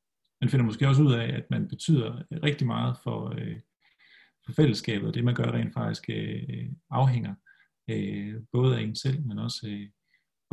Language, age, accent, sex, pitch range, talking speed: Danish, 40-59, native, male, 115-145 Hz, 175 wpm